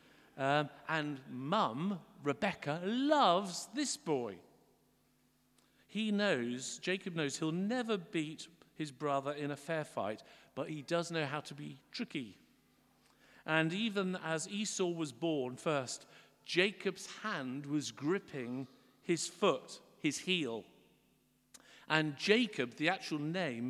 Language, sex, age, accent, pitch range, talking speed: English, male, 50-69, British, 135-180 Hz, 120 wpm